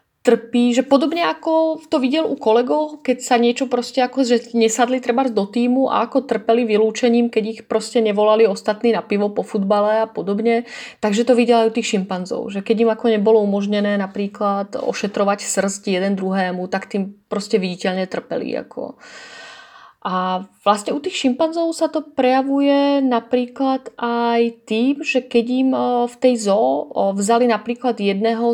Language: Czech